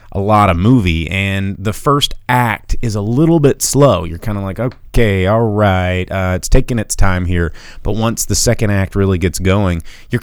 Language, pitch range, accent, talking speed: English, 85-110 Hz, American, 205 wpm